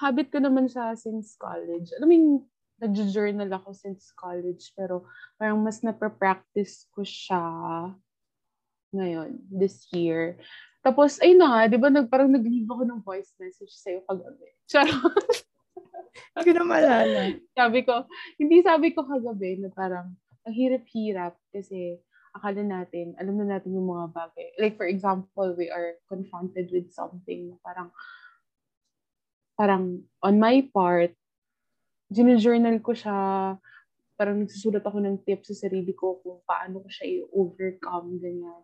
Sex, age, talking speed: female, 20-39, 135 wpm